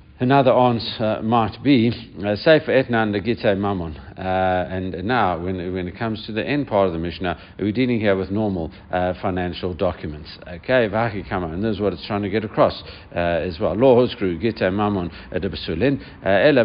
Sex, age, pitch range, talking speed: male, 60-79, 90-110 Hz, 150 wpm